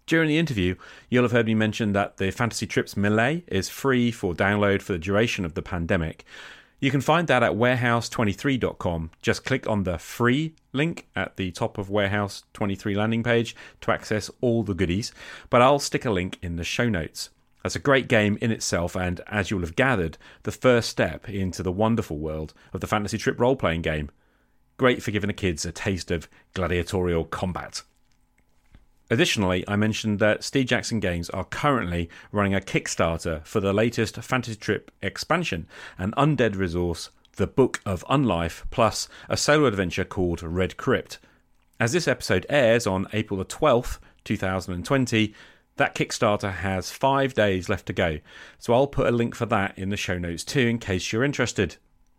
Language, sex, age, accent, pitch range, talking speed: English, male, 40-59, British, 90-120 Hz, 180 wpm